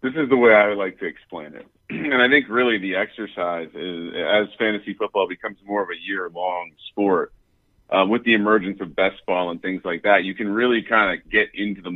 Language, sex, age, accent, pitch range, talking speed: English, male, 40-59, American, 100-140 Hz, 230 wpm